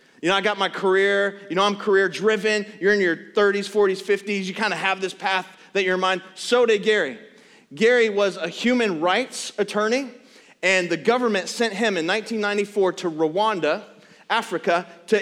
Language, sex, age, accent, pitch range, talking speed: English, male, 30-49, American, 165-205 Hz, 185 wpm